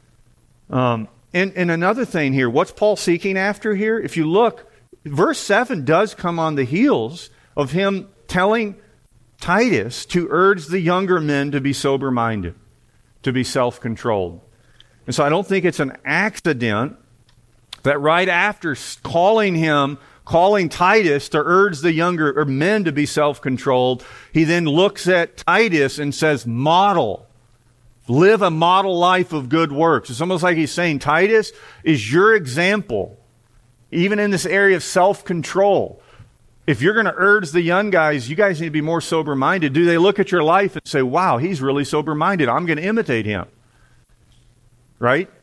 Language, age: English, 50-69